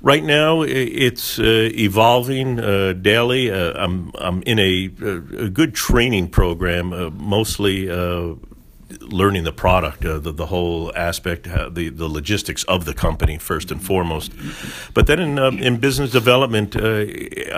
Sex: male